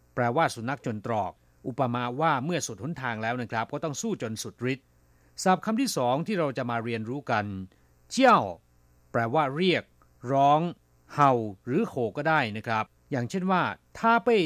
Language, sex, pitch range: Thai, male, 110-160 Hz